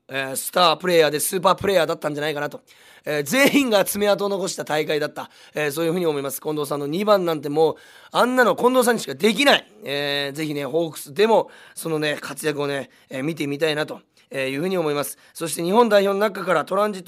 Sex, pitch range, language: male, 150-205 Hz, Japanese